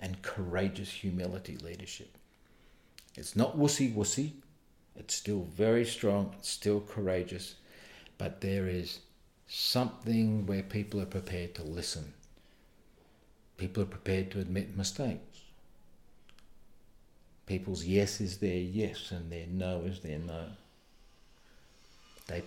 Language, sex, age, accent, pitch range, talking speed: English, male, 50-69, Australian, 90-110 Hz, 110 wpm